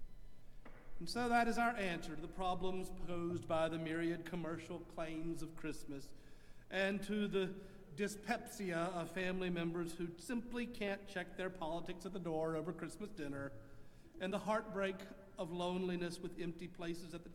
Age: 50-69